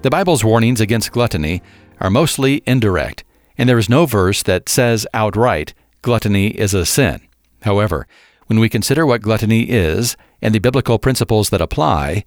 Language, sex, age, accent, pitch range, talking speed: English, male, 50-69, American, 95-125 Hz, 160 wpm